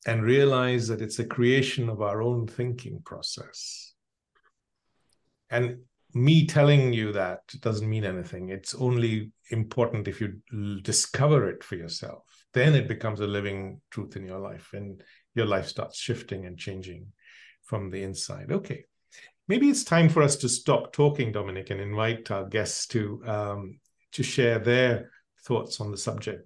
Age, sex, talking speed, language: 50-69, male, 155 wpm, English